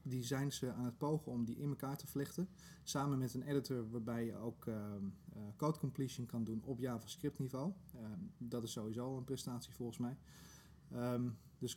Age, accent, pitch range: 30-49, Dutch, 120-145 Hz